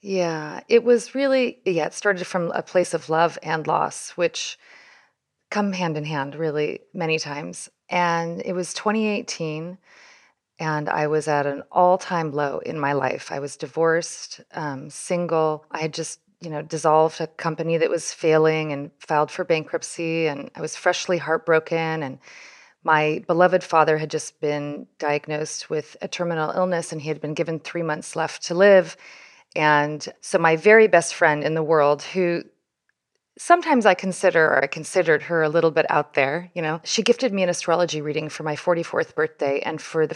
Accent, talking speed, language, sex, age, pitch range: American, 180 wpm, English, female, 30-49, 155-180 Hz